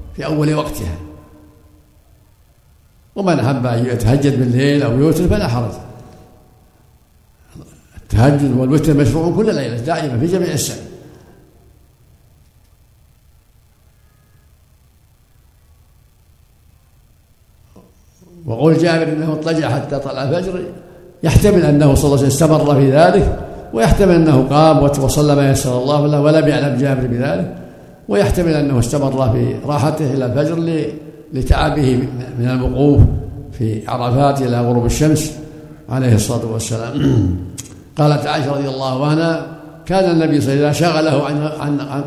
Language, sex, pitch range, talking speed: Arabic, male, 125-155 Hz, 115 wpm